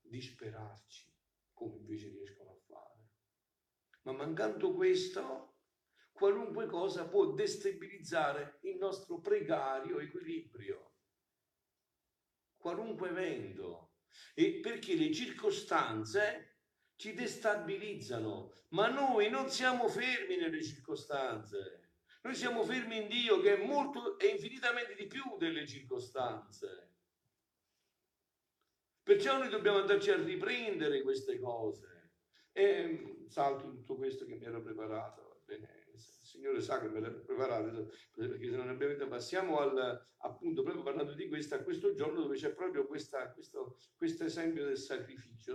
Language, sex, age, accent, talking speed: Italian, male, 50-69, native, 125 wpm